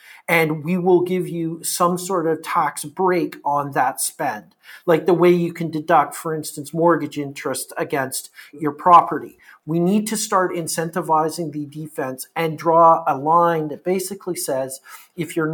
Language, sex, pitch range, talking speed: English, male, 155-180 Hz, 160 wpm